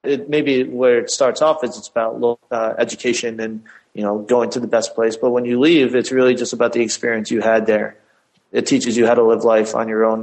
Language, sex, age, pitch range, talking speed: English, male, 30-49, 115-125 Hz, 240 wpm